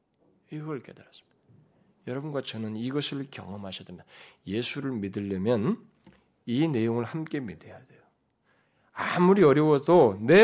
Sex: male